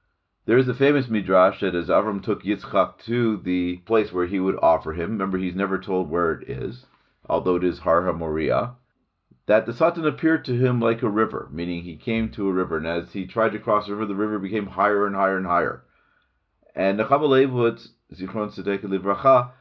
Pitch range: 95-115 Hz